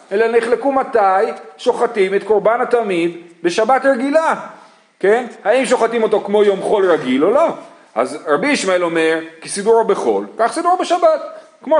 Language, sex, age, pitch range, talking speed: Hebrew, male, 40-59, 180-260 Hz, 145 wpm